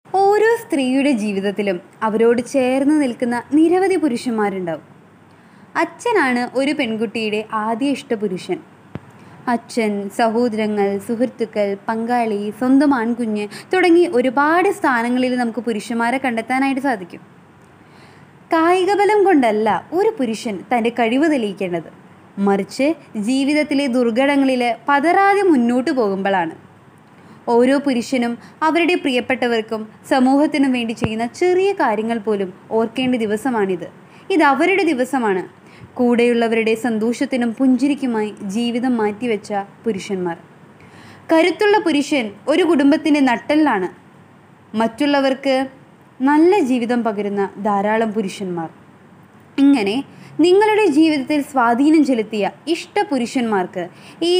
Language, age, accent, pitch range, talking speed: Malayalam, 20-39, native, 215-300 Hz, 85 wpm